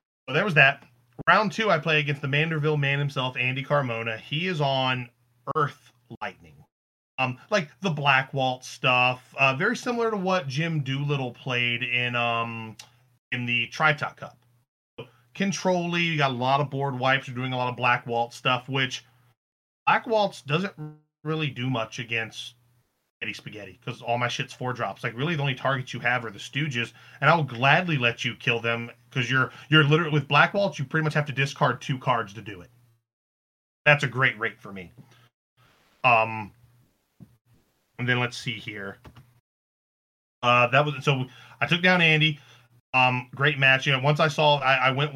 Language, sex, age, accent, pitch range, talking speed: English, male, 30-49, American, 120-145 Hz, 190 wpm